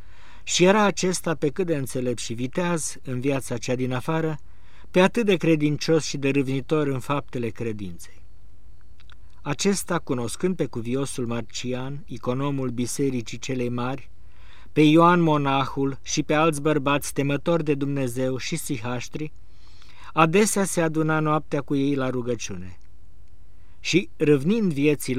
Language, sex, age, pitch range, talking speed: Romanian, male, 50-69, 105-155 Hz, 135 wpm